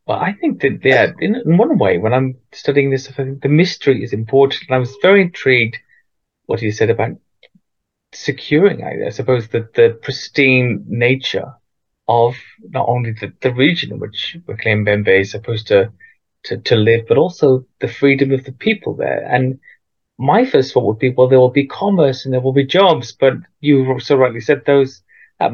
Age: 30-49